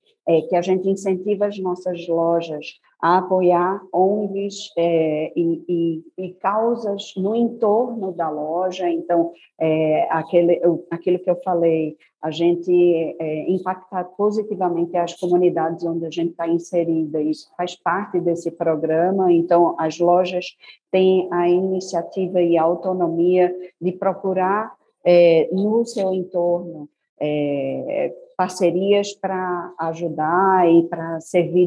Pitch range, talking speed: 170-190 Hz, 125 wpm